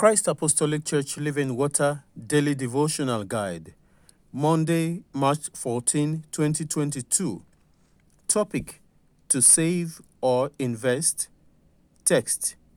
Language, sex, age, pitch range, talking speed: English, male, 50-69, 125-160 Hz, 85 wpm